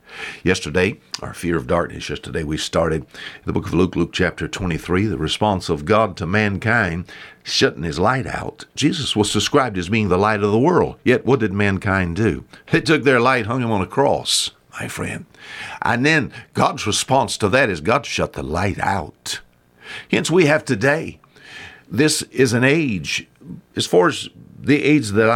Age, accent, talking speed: 60-79, American, 180 wpm